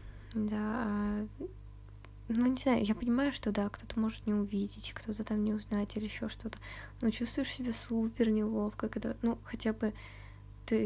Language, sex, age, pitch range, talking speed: Russian, female, 20-39, 205-225 Hz, 165 wpm